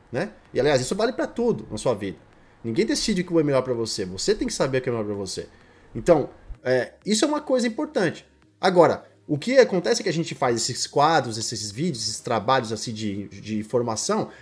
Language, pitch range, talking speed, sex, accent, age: Portuguese, 130-215 Hz, 230 wpm, male, Brazilian, 20-39